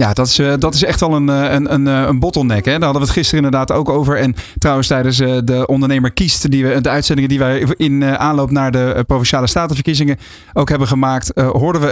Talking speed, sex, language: 220 wpm, male, Dutch